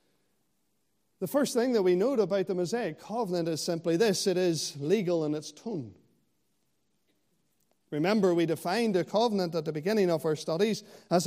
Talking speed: 165 wpm